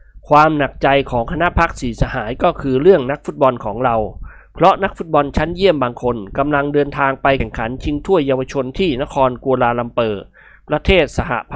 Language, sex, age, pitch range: Thai, male, 20-39, 120-150 Hz